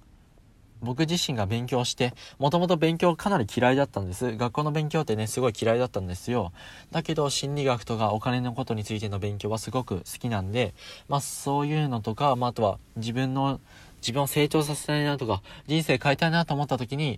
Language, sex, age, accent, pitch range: Japanese, male, 20-39, native, 105-135 Hz